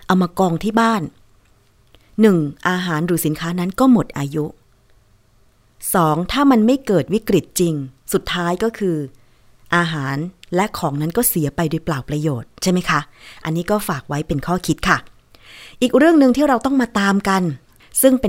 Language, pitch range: Thai, 155-200 Hz